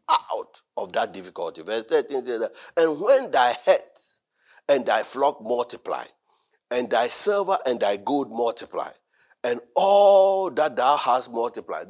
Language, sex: English, male